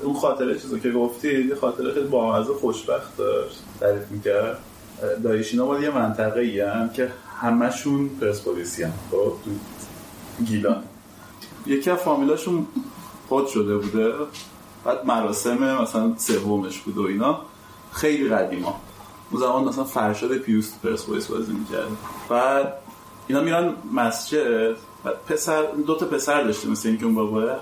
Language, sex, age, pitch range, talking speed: Persian, male, 30-49, 115-180 Hz, 135 wpm